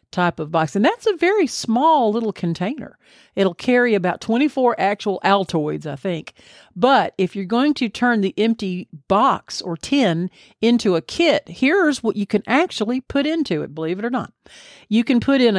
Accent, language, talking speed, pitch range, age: American, English, 185 wpm, 180-235 Hz, 50-69